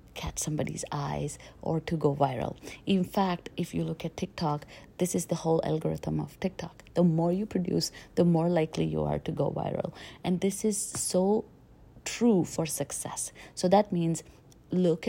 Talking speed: 175 wpm